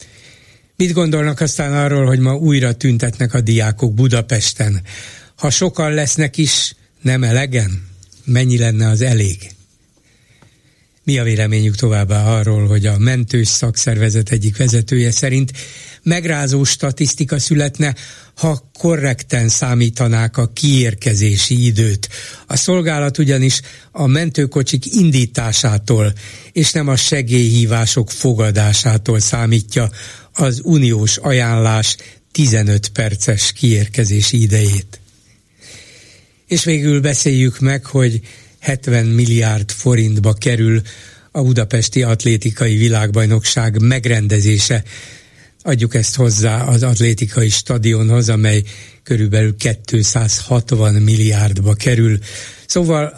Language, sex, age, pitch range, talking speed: Hungarian, male, 60-79, 110-135 Hz, 100 wpm